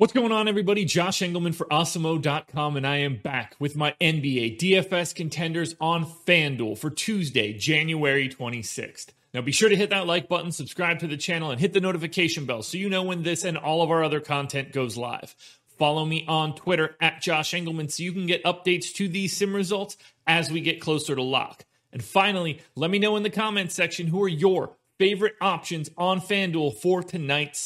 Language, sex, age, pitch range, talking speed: English, male, 30-49, 145-185 Hz, 200 wpm